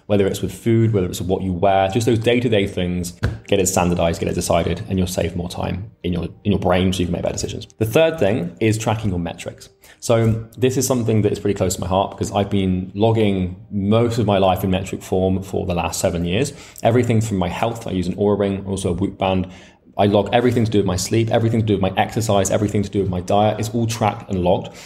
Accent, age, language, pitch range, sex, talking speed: British, 20-39, English, 95-110 Hz, male, 260 wpm